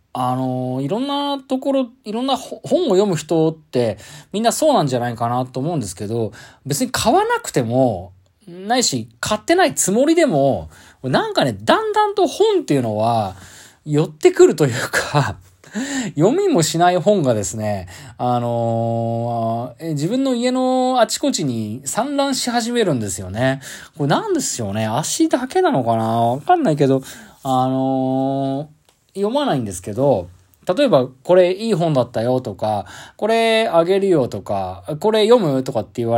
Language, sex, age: Japanese, male, 20-39